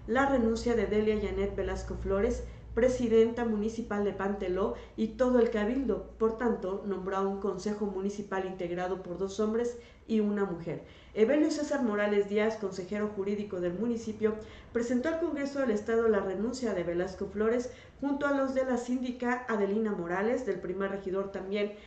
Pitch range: 195-230 Hz